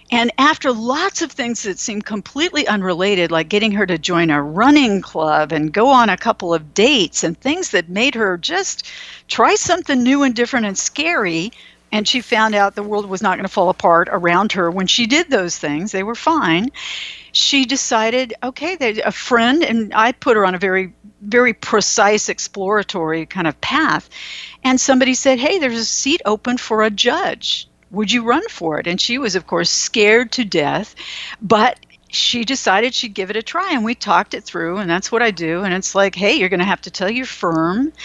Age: 60-79